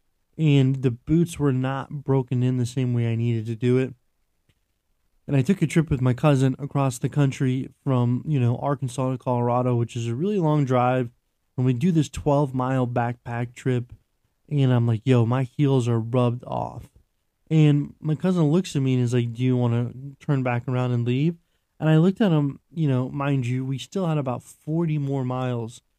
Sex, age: male, 20-39